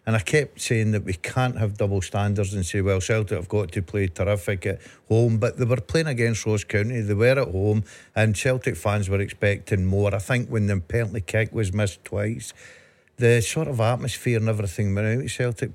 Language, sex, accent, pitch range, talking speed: English, male, British, 105-120 Hz, 215 wpm